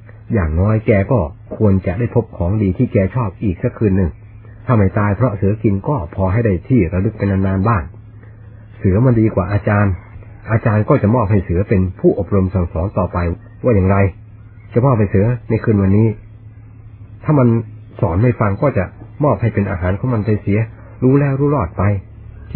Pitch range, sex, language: 100-110 Hz, male, Thai